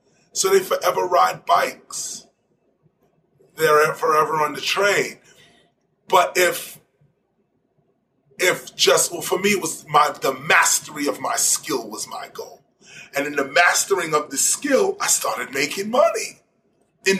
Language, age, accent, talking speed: English, 30-49, American, 140 wpm